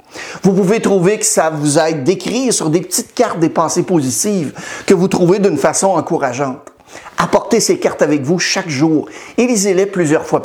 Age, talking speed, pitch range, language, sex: 50-69, 185 wpm, 150-210 Hz, French, male